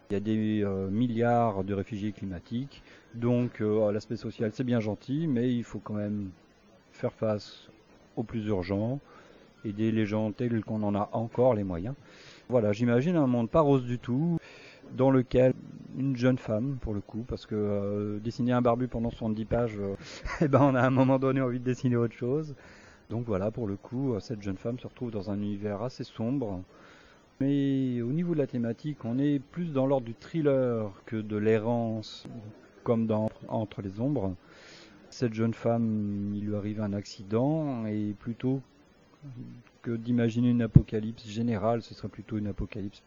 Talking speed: 180 wpm